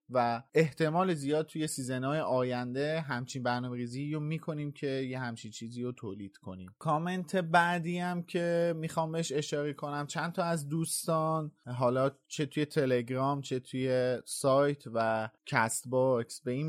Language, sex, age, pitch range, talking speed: Persian, male, 30-49, 125-150 Hz, 145 wpm